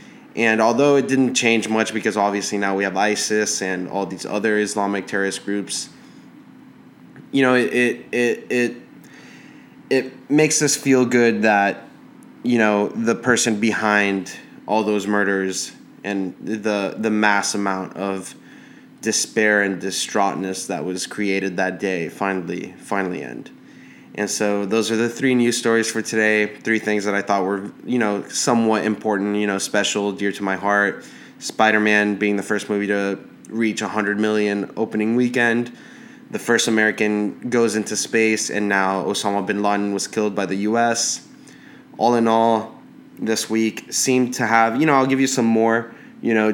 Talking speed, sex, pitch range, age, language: 160 wpm, male, 100-115 Hz, 20-39, English